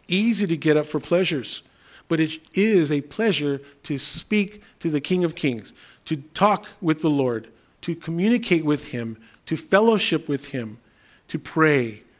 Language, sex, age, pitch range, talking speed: English, male, 40-59, 135-185 Hz, 160 wpm